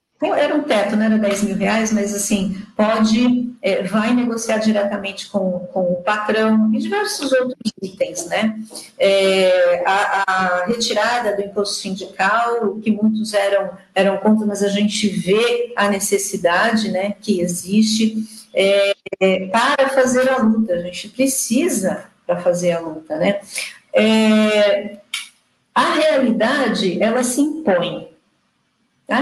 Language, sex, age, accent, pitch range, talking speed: Portuguese, female, 50-69, Brazilian, 205-265 Hz, 125 wpm